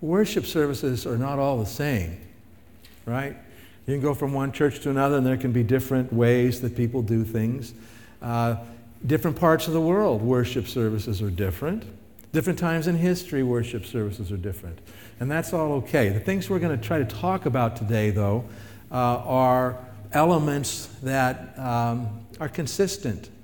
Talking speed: 165 wpm